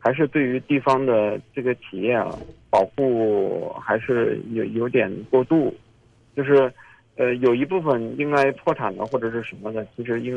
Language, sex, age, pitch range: Chinese, male, 50-69, 115-135 Hz